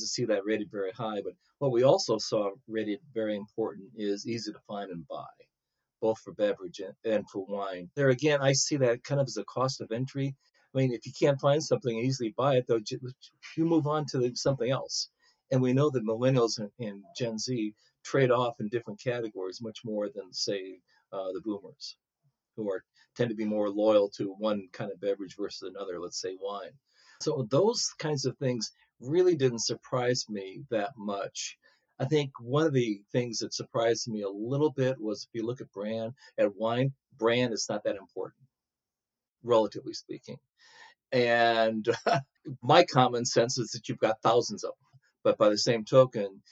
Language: English